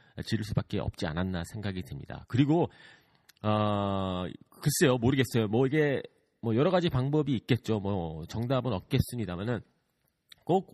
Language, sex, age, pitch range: Korean, male, 40-59, 90-130 Hz